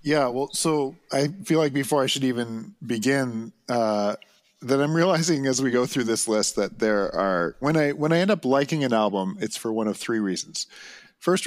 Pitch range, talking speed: 105-135 Hz, 210 wpm